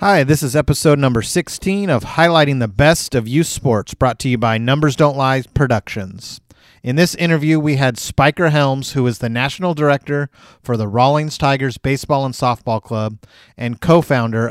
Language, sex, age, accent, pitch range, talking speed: English, male, 30-49, American, 120-145 Hz, 180 wpm